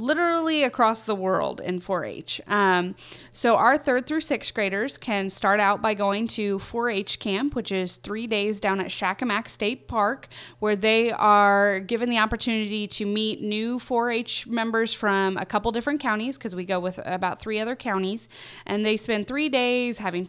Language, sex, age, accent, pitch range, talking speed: English, female, 20-39, American, 195-235 Hz, 175 wpm